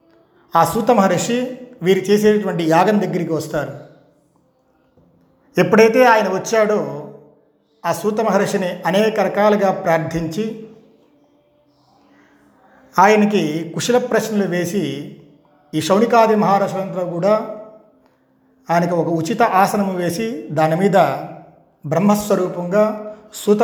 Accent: native